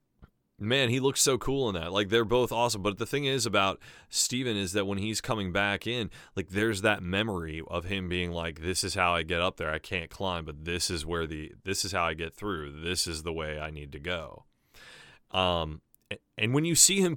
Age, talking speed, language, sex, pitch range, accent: 30-49, 235 wpm, English, male, 85-110 Hz, American